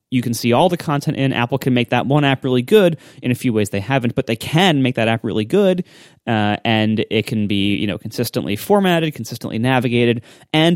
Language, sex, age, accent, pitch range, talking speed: English, male, 30-49, American, 110-135 Hz, 230 wpm